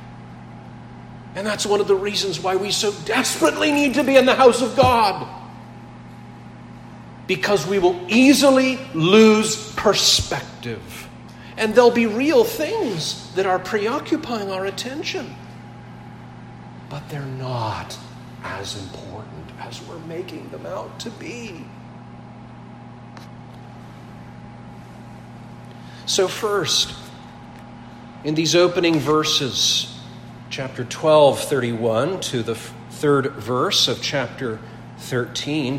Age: 40-59